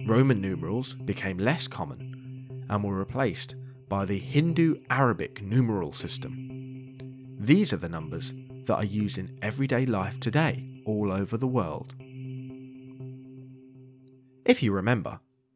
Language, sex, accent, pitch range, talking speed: English, male, British, 105-135 Hz, 120 wpm